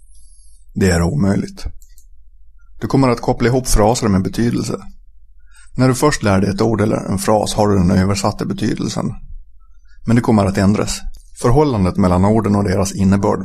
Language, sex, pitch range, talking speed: Swedish, male, 90-110 Hz, 165 wpm